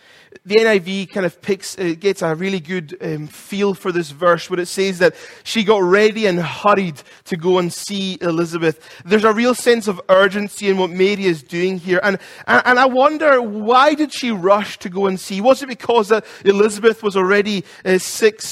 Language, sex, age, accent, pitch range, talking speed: English, male, 30-49, British, 190-230 Hz, 205 wpm